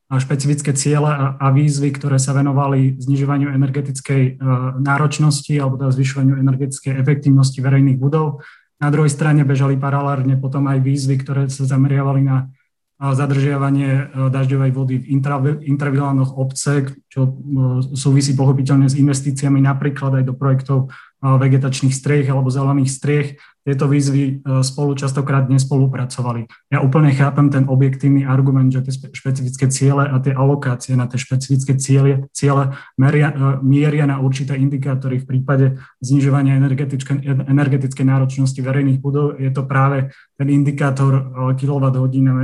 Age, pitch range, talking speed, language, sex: 20-39, 135-140 Hz, 130 wpm, Slovak, male